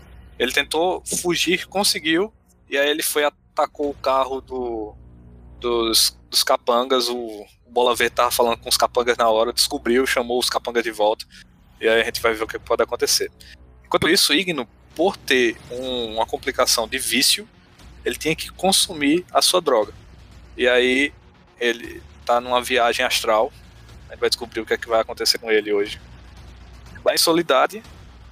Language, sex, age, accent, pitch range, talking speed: Portuguese, male, 20-39, Brazilian, 110-150 Hz, 175 wpm